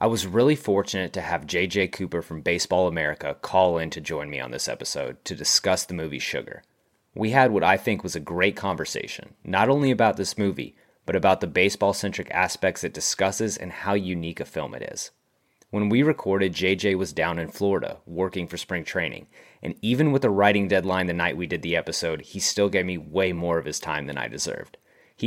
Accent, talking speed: American, 210 wpm